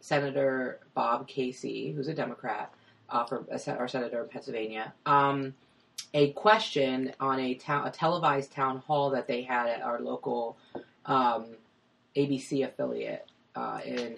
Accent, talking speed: American, 140 wpm